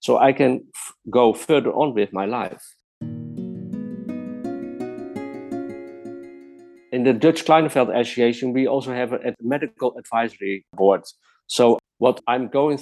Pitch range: 115-135 Hz